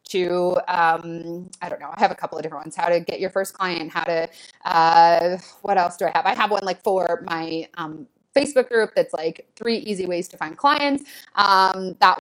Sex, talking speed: female, 220 wpm